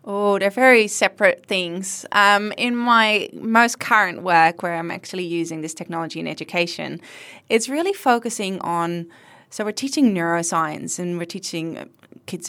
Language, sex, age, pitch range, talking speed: English, female, 20-39, 160-200 Hz, 150 wpm